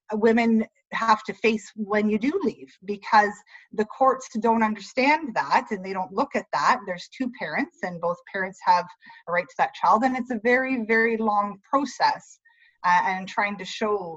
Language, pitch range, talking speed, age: English, 185-235 Hz, 185 wpm, 30-49